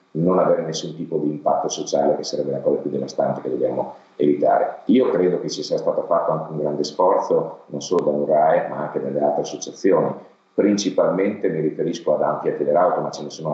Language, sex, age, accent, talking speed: Italian, male, 40-59, native, 200 wpm